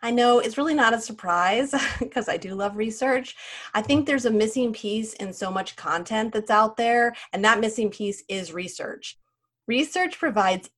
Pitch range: 200-255 Hz